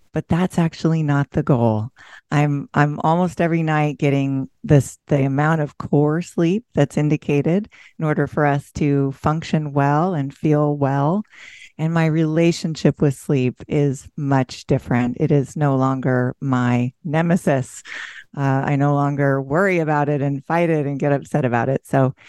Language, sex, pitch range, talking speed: English, female, 140-165 Hz, 160 wpm